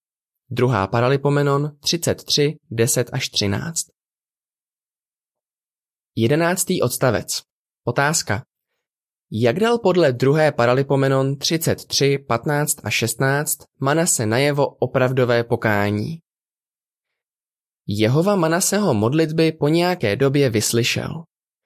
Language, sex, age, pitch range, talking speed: Czech, male, 20-39, 120-165 Hz, 80 wpm